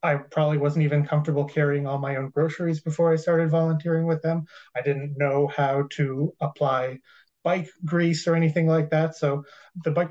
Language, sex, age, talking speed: English, male, 20-39, 185 wpm